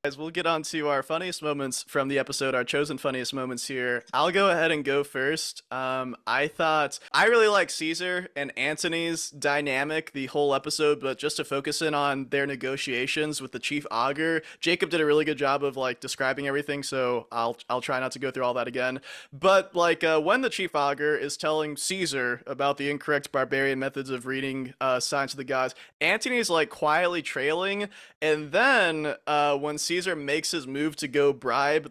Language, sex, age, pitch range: English, male, 20-39, 135-155 Hz